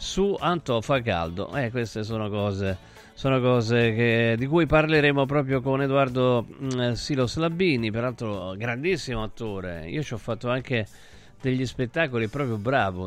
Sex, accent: male, native